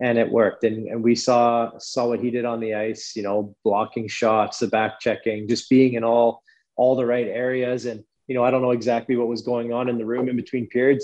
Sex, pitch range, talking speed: male, 115-130 Hz, 250 wpm